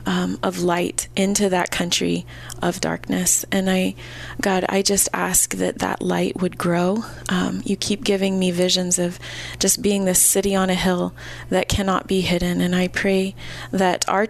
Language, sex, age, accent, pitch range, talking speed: English, female, 20-39, American, 175-195 Hz, 175 wpm